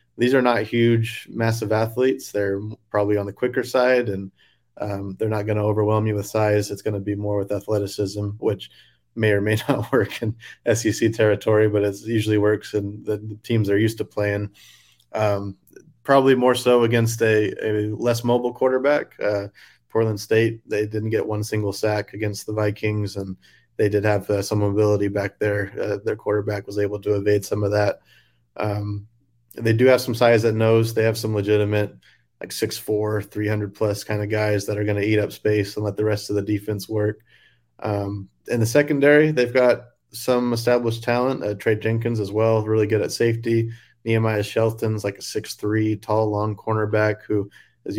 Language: English